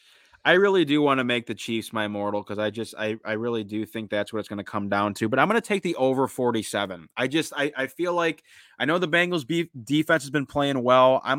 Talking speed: 270 wpm